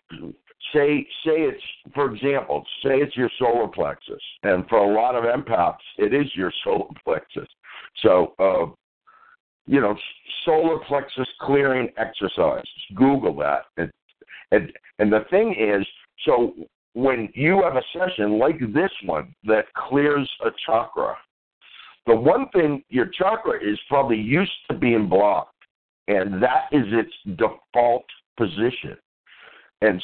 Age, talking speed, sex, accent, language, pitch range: 60-79, 135 wpm, male, American, English, 105-150 Hz